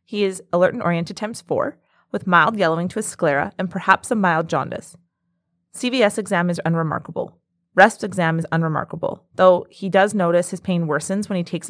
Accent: American